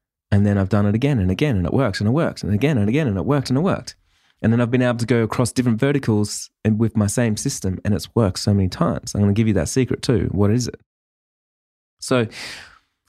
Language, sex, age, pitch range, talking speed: English, male, 20-39, 105-135 Hz, 260 wpm